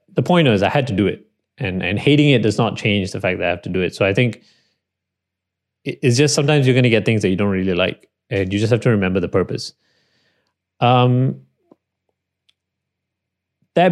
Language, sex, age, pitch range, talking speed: English, male, 30-49, 95-125 Hz, 210 wpm